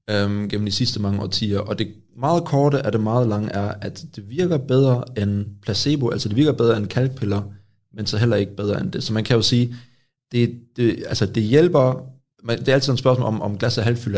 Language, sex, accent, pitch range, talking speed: Danish, male, native, 105-125 Hz, 235 wpm